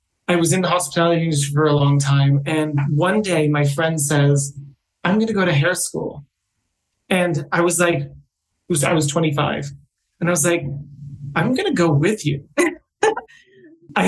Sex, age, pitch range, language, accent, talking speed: male, 30-49, 150-195 Hz, English, American, 175 wpm